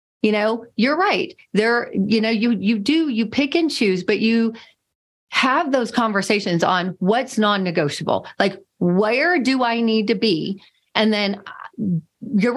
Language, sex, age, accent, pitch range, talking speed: English, female, 40-59, American, 200-270 Hz, 155 wpm